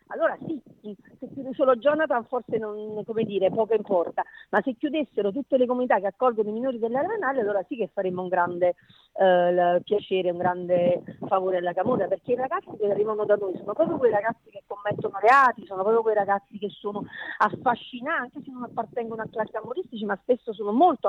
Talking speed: 200 wpm